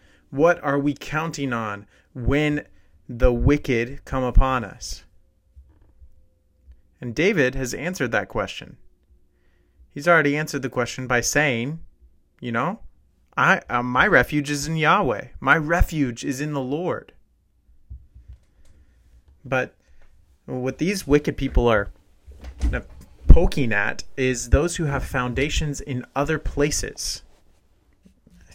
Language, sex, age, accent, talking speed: English, male, 30-49, American, 120 wpm